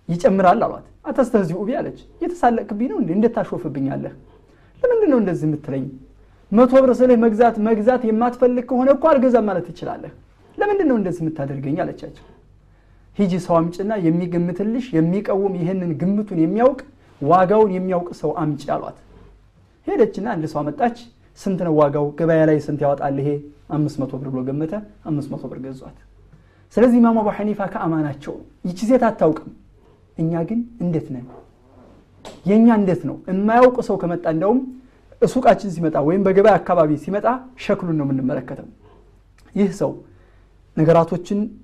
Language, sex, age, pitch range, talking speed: Amharic, male, 30-49, 155-215 Hz, 105 wpm